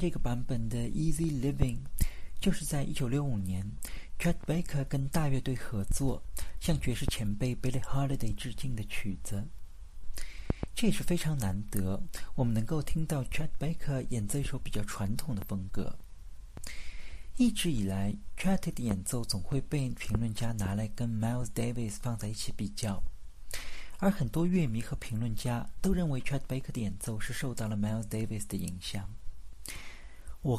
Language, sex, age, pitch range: Chinese, male, 50-69, 100-135 Hz